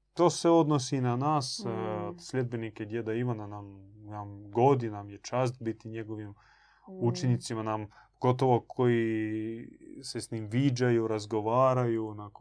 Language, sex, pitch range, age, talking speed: Croatian, male, 110-130 Hz, 20-39, 120 wpm